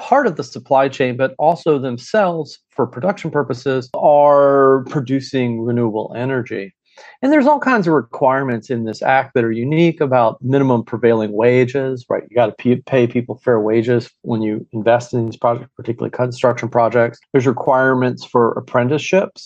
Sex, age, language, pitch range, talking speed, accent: male, 40-59, English, 120-145 Hz, 160 wpm, American